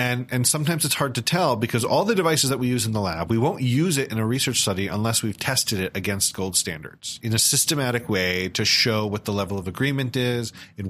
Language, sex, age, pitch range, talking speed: English, male, 40-59, 105-130 Hz, 250 wpm